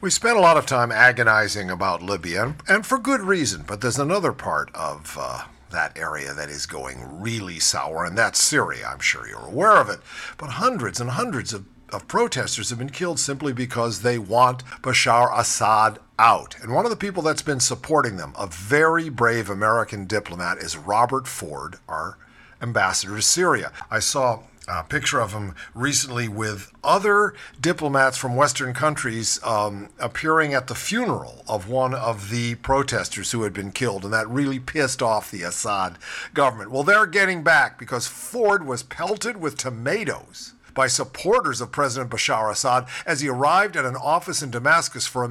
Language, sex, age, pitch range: English, male, 50-69, 115-160 Hz